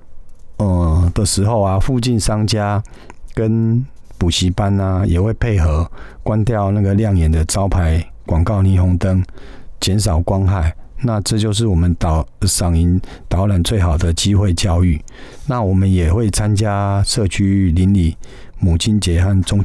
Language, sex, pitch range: Chinese, male, 90-105 Hz